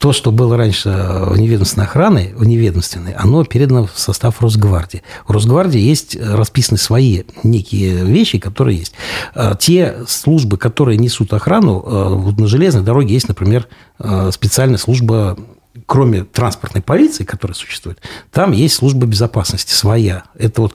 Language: Russian